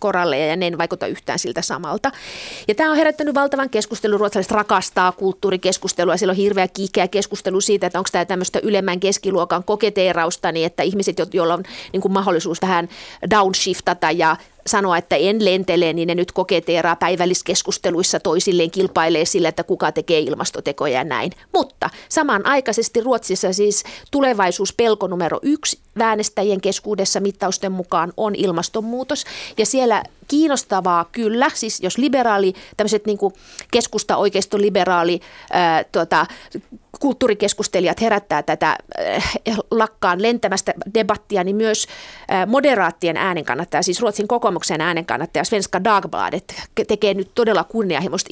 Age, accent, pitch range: 30-49, native, 180-220 Hz